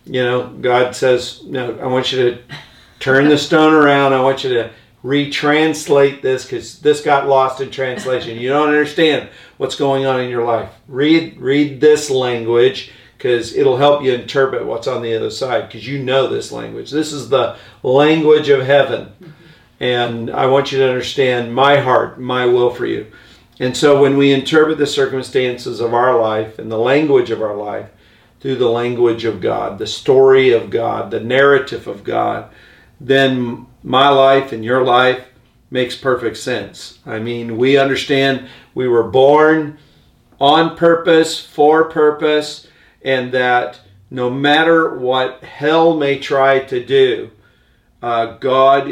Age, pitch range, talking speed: 50-69, 125-150 Hz, 160 wpm